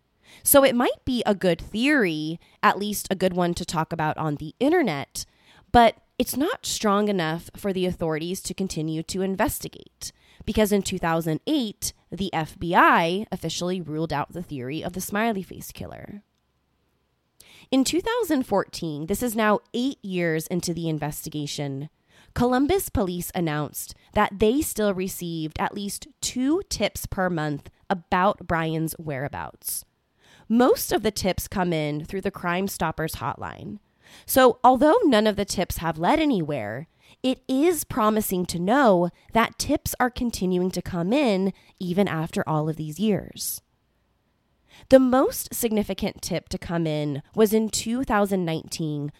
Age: 20-39